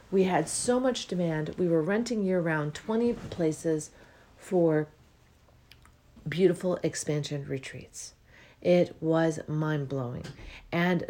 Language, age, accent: English, 40-59, American